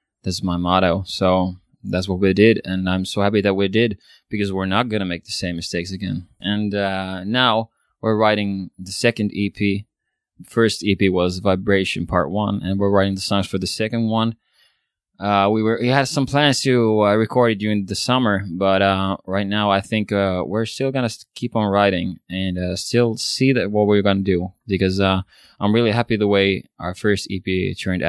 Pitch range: 95-105 Hz